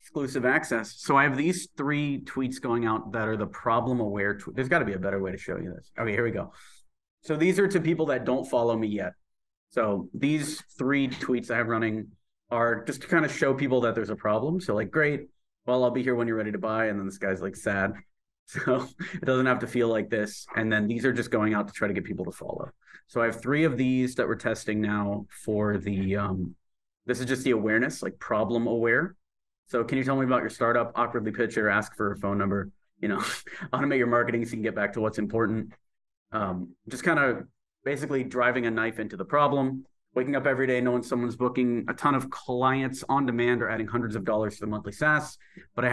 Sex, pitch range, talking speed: male, 110-130 Hz, 240 wpm